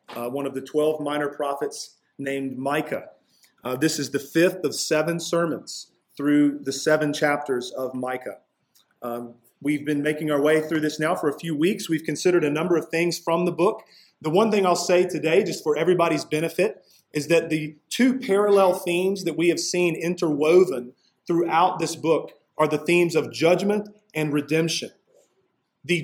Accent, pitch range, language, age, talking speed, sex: American, 150-180 Hz, English, 40-59, 175 wpm, male